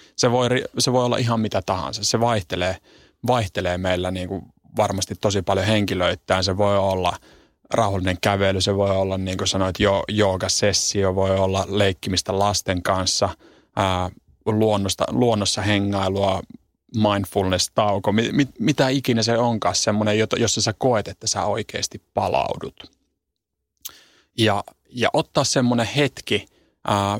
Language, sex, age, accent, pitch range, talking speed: Finnish, male, 30-49, native, 95-115 Hz, 130 wpm